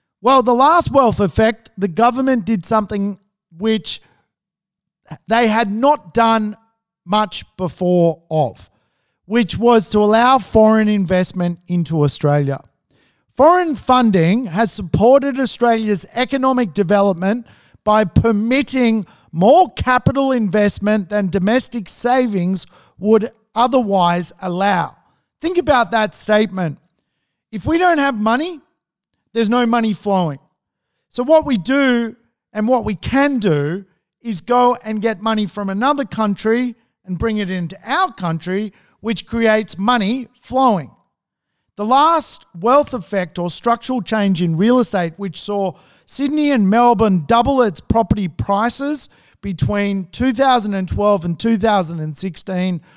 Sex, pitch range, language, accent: male, 185-240 Hz, English, Australian